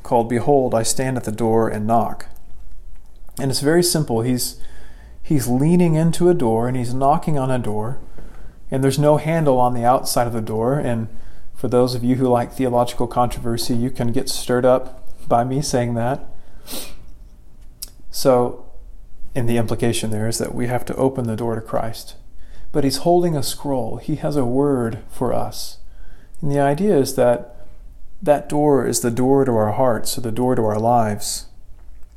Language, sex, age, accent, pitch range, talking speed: English, male, 40-59, American, 115-135 Hz, 180 wpm